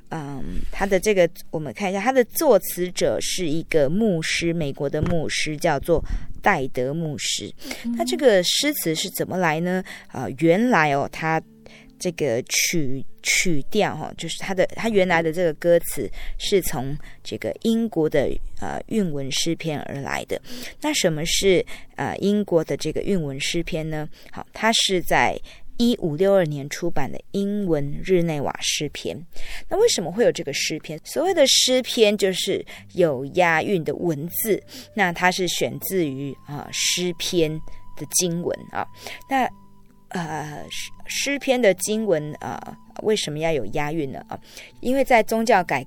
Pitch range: 150-200 Hz